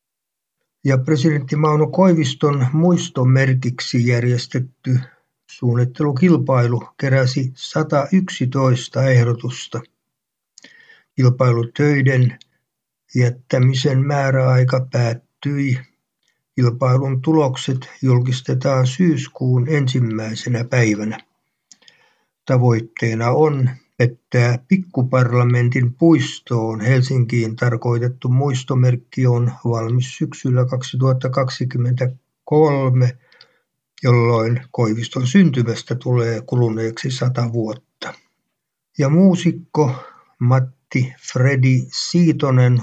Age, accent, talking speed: 60-79, native, 60 wpm